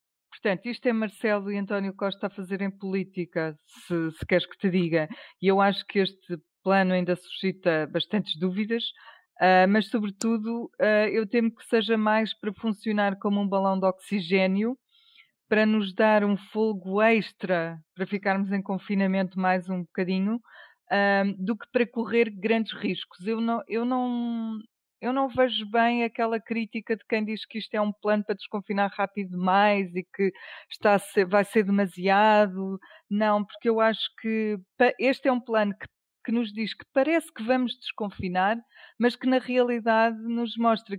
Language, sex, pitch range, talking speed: Portuguese, female, 195-230 Hz, 160 wpm